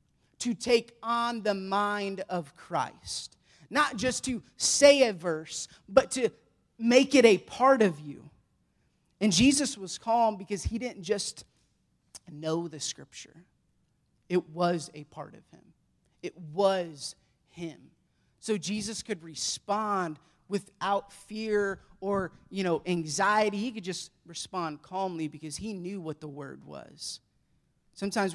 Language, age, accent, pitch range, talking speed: English, 30-49, American, 160-200 Hz, 135 wpm